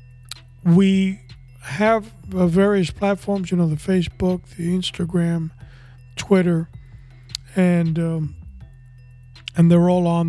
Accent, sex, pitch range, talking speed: American, male, 145-180 Hz, 100 wpm